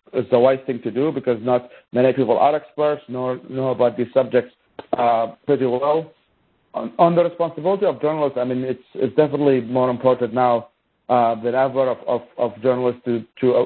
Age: 50-69